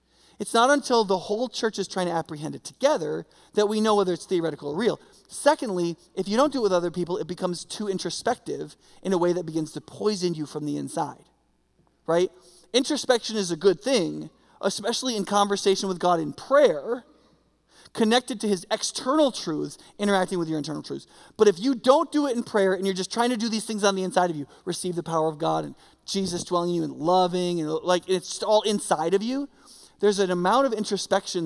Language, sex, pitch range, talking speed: English, male, 175-230 Hz, 215 wpm